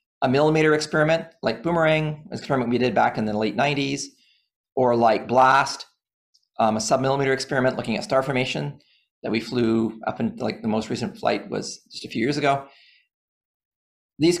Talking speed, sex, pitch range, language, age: 175 wpm, male, 115-150 Hz, English, 40-59